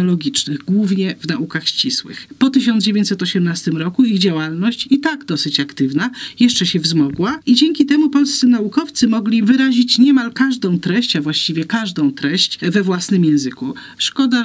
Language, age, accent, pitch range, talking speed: Polish, 40-59, native, 160-230 Hz, 140 wpm